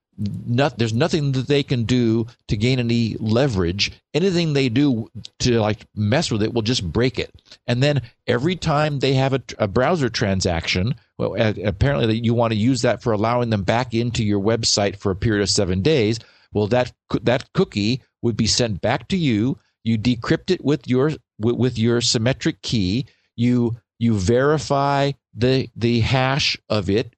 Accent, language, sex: American, English, male